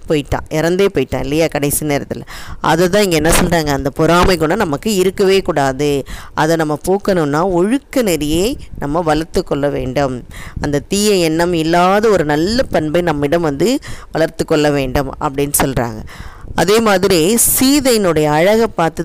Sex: female